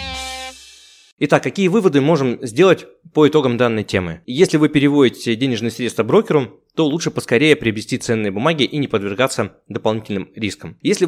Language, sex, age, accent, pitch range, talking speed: Russian, male, 20-39, native, 110-140 Hz, 145 wpm